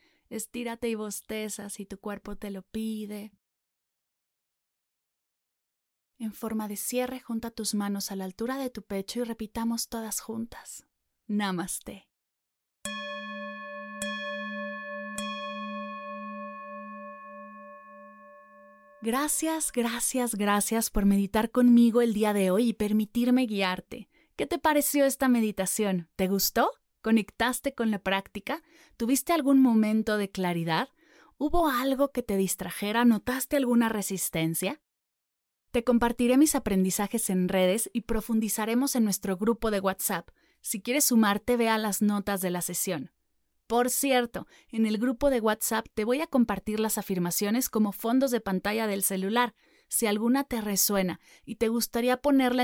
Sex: female